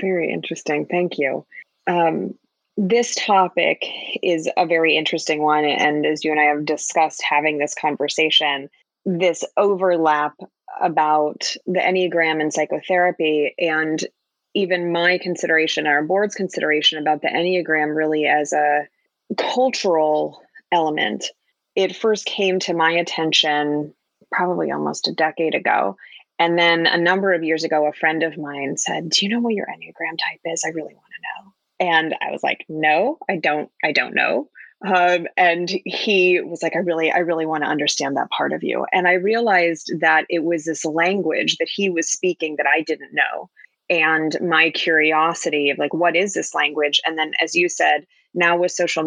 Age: 20-39